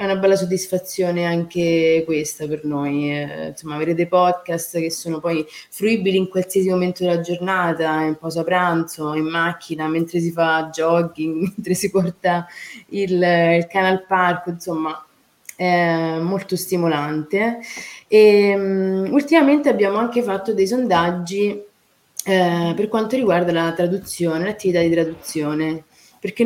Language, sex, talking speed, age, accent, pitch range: Italian, female, 135 wpm, 20-39, native, 160-185 Hz